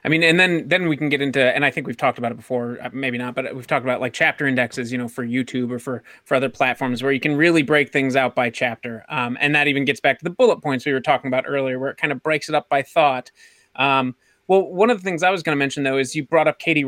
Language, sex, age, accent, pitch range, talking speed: English, male, 30-49, American, 130-170 Hz, 300 wpm